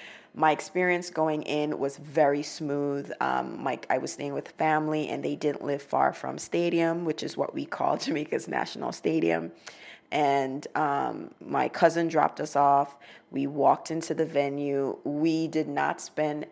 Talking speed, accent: 165 wpm, American